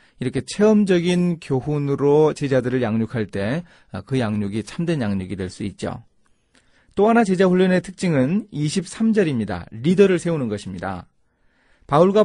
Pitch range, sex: 120-180 Hz, male